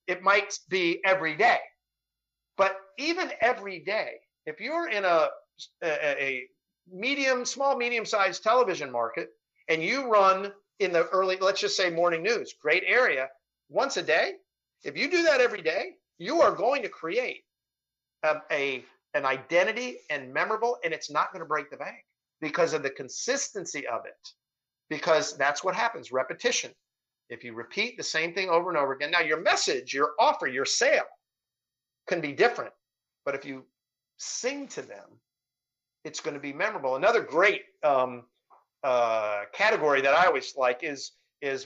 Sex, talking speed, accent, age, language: male, 160 wpm, American, 50-69, English